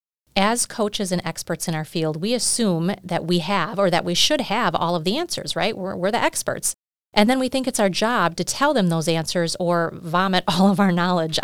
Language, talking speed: English, 230 wpm